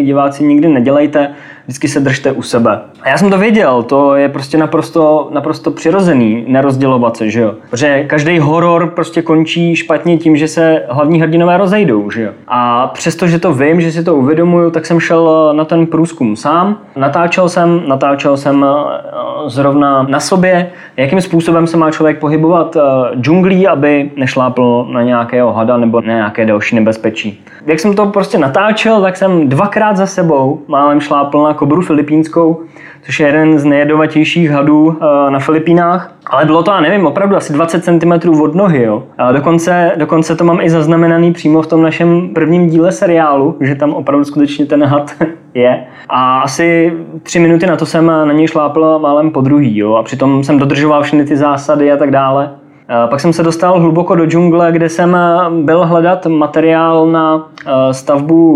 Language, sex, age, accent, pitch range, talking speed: Czech, male, 20-39, native, 140-170 Hz, 170 wpm